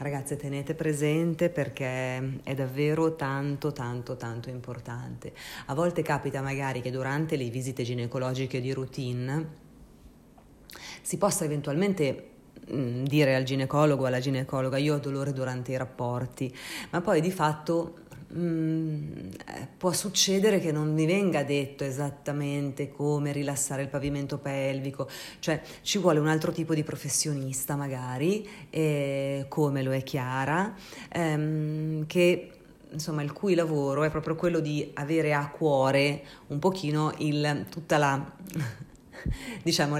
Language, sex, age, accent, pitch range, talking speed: Italian, female, 30-49, native, 135-160 Hz, 130 wpm